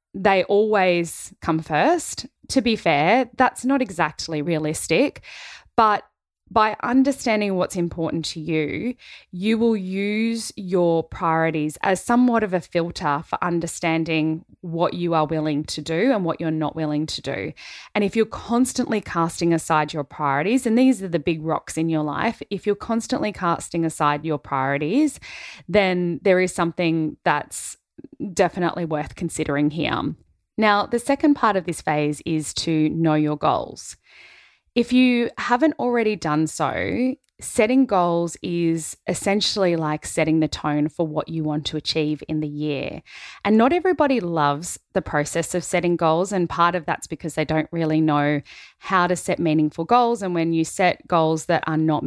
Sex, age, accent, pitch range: female, 20-39, Australian, 155-205 Hz